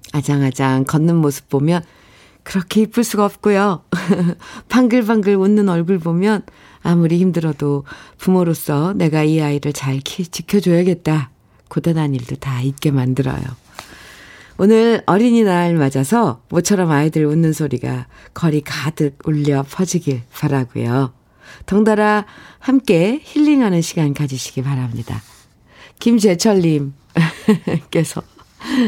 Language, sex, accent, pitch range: Korean, female, native, 145-210 Hz